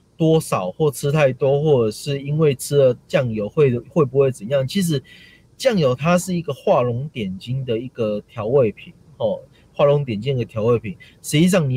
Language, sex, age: Chinese, male, 30-49